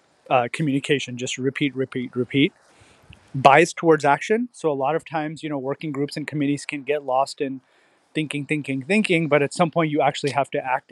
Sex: male